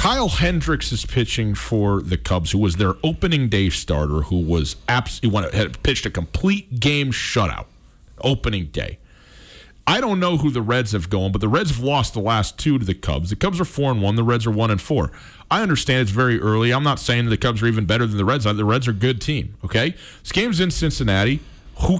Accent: American